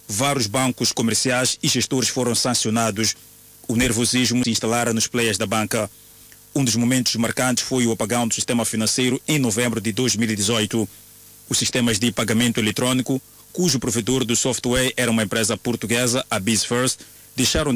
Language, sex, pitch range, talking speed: Portuguese, male, 115-130 Hz, 150 wpm